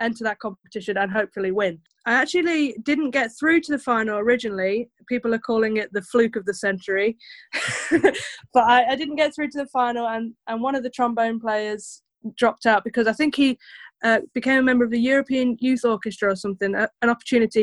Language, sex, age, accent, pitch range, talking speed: English, female, 20-39, British, 210-260 Hz, 195 wpm